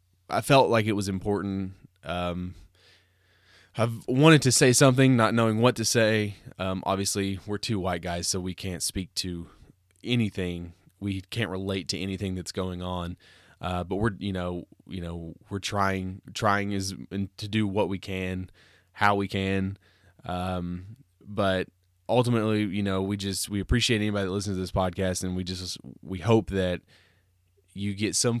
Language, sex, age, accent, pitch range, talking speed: English, male, 20-39, American, 90-110 Hz, 170 wpm